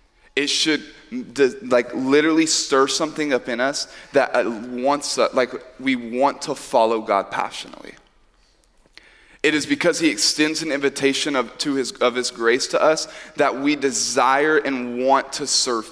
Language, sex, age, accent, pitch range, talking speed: English, male, 20-39, American, 110-140 Hz, 150 wpm